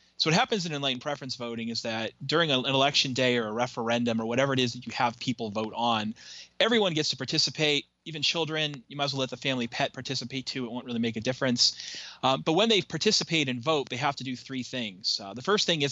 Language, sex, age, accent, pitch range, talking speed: English, male, 30-49, American, 115-145 Hz, 250 wpm